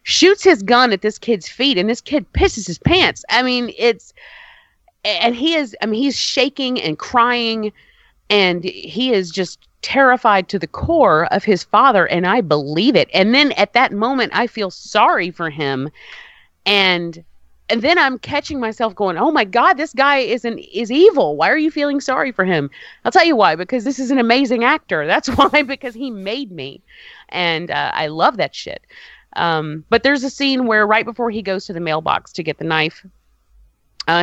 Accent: American